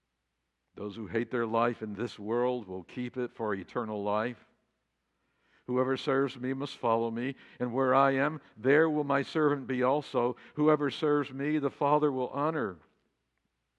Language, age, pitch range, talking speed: English, 60-79, 110-145 Hz, 160 wpm